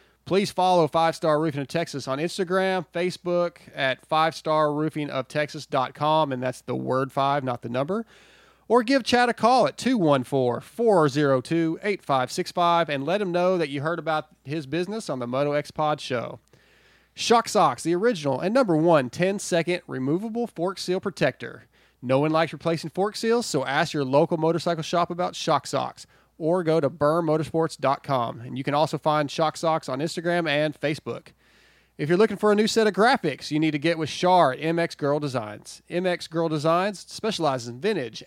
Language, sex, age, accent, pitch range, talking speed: English, male, 30-49, American, 145-175 Hz, 170 wpm